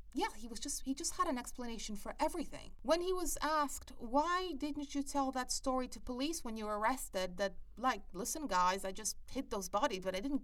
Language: English